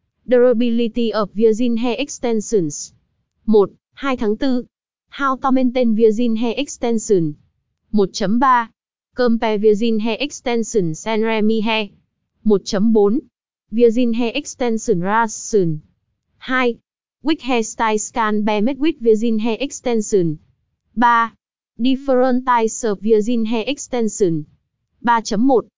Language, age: Vietnamese, 20-39